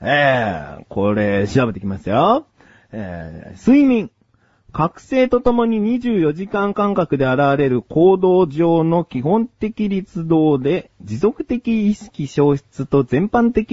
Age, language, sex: 40-59, Japanese, male